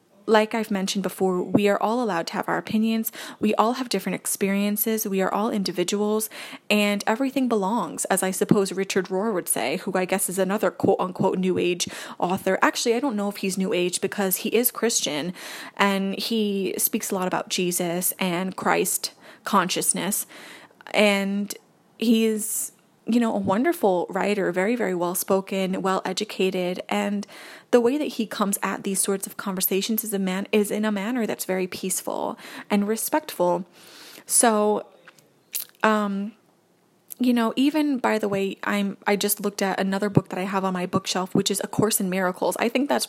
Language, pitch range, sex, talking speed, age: English, 190-220 Hz, female, 180 wpm, 20-39